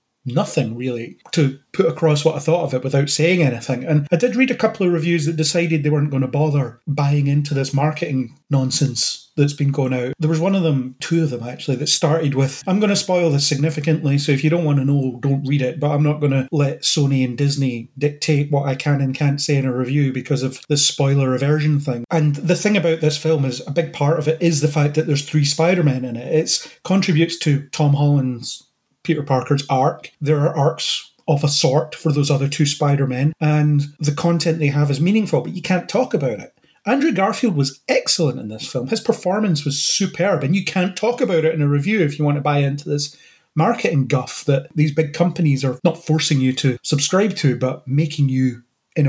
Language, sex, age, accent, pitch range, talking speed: English, male, 30-49, British, 135-160 Hz, 230 wpm